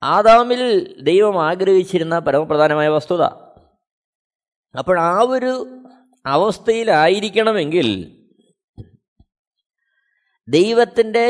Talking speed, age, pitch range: 55 wpm, 20-39, 210-270 Hz